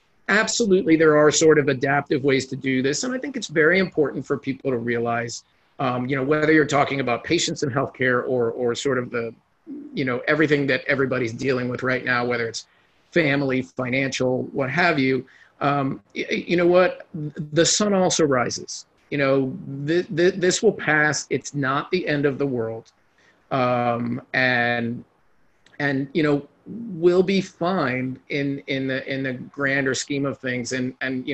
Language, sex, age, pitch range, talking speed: English, male, 40-59, 125-150 Hz, 180 wpm